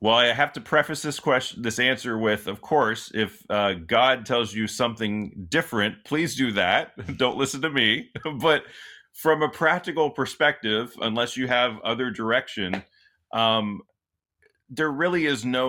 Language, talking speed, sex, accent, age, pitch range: English, 155 wpm, male, American, 30-49, 100-135 Hz